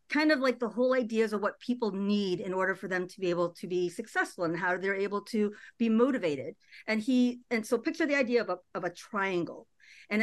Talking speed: 235 wpm